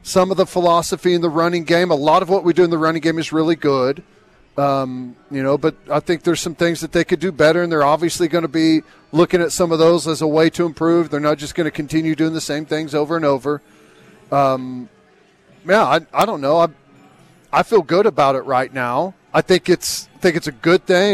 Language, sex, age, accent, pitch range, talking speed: English, male, 40-59, American, 155-185 Hz, 245 wpm